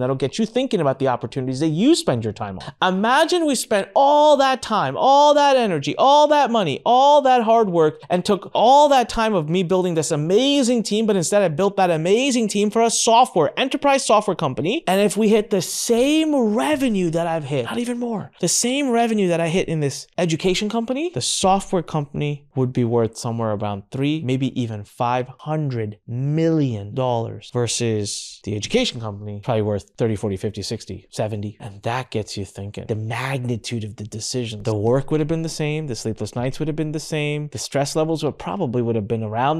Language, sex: English, male